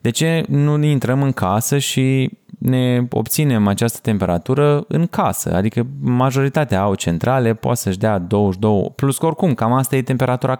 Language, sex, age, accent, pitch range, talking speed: Romanian, male, 20-39, native, 105-135 Hz, 155 wpm